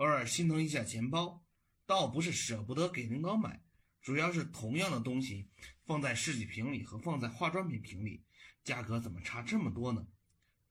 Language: Chinese